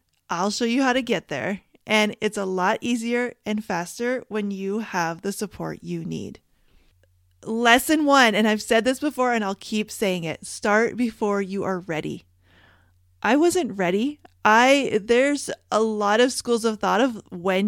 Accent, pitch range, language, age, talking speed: American, 175-235 Hz, English, 30-49, 175 wpm